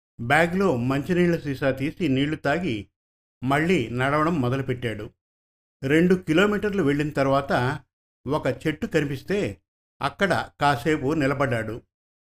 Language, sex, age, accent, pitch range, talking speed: Telugu, male, 50-69, native, 120-165 Hz, 90 wpm